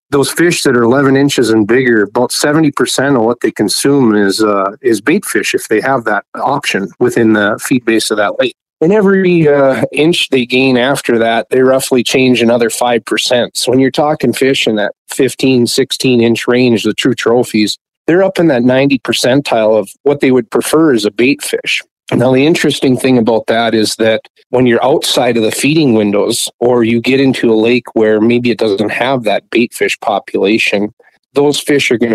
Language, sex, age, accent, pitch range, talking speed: English, male, 50-69, American, 115-140 Hz, 200 wpm